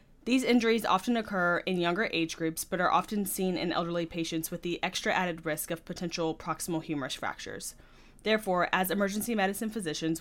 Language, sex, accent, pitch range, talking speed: English, female, American, 160-200 Hz, 175 wpm